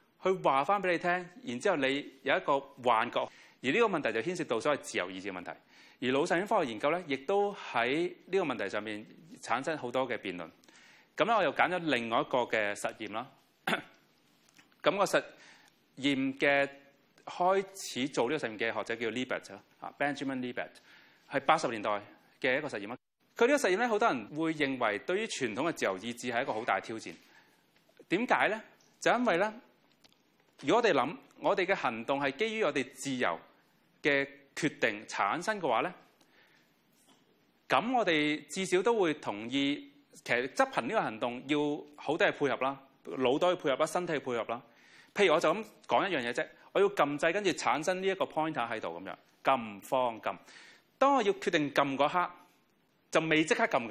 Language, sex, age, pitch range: Chinese, male, 30-49, 135-190 Hz